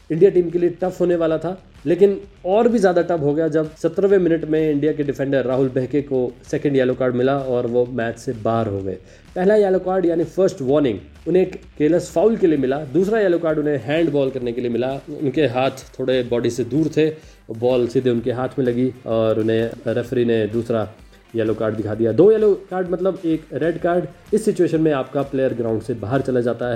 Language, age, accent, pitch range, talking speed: Hindi, 20-39, native, 115-165 Hz, 220 wpm